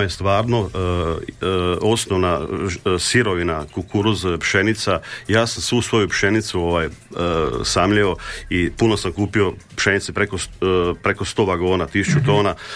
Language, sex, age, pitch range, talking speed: Croatian, male, 40-59, 90-110 Hz, 125 wpm